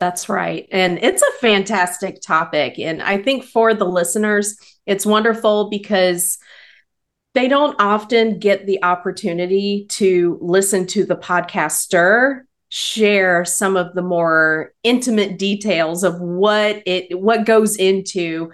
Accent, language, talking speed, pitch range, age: American, English, 130 wpm, 165-210 Hz, 40-59